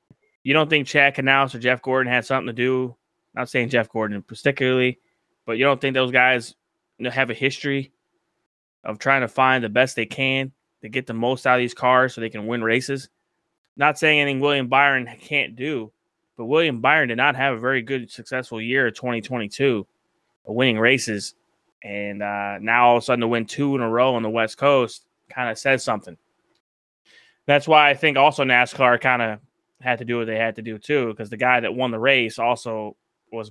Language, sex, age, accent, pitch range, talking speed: English, male, 20-39, American, 115-140 Hz, 210 wpm